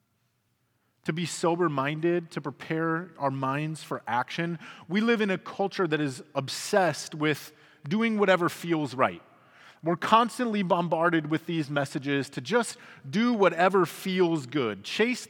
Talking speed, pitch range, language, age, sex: 135 wpm, 150-200 Hz, English, 30-49, male